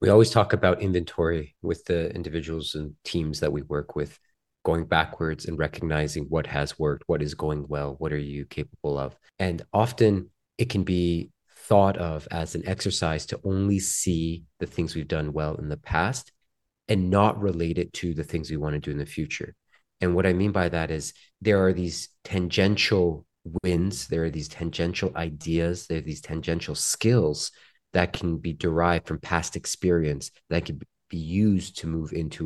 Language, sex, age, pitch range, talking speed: English, male, 30-49, 75-95 Hz, 185 wpm